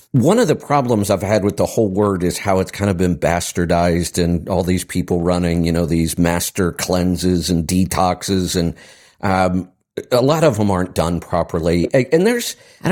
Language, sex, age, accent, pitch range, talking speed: English, male, 50-69, American, 85-115 Hz, 190 wpm